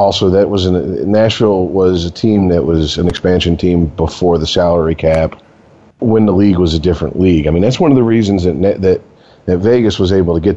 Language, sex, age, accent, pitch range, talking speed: English, male, 40-59, American, 85-110 Hz, 220 wpm